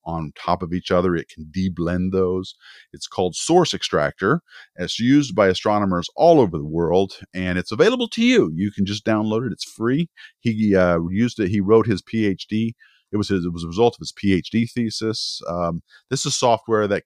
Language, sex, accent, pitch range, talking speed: English, male, American, 90-120 Hz, 200 wpm